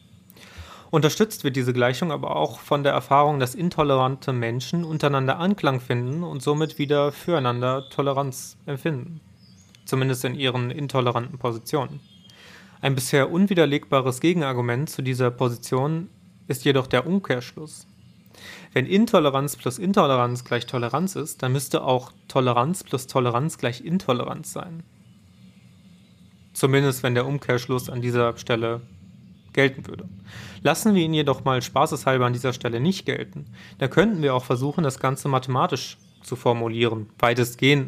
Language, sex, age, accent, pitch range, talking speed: German, male, 30-49, German, 125-150 Hz, 135 wpm